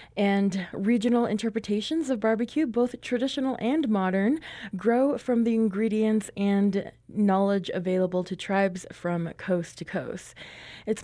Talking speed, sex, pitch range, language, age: 125 wpm, female, 185-225 Hz, English, 20-39